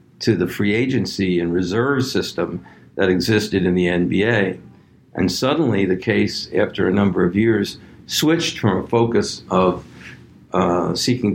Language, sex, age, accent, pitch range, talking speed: English, male, 60-79, American, 90-105 Hz, 150 wpm